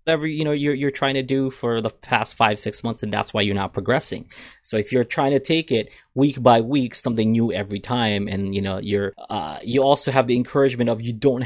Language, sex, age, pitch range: English, male, 20-39, 105-135 Hz